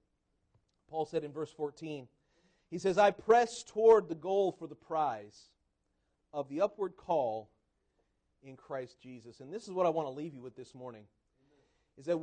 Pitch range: 160-260 Hz